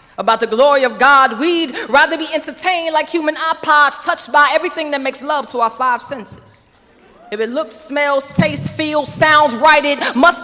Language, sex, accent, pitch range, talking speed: English, female, American, 270-310 Hz, 185 wpm